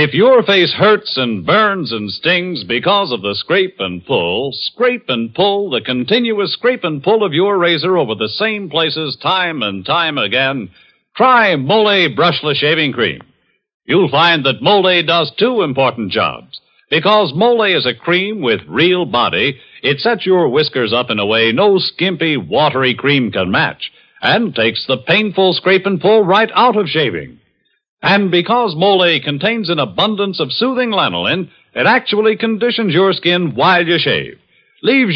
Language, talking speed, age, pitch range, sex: English, 165 wpm, 60-79, 145-205 Hz, male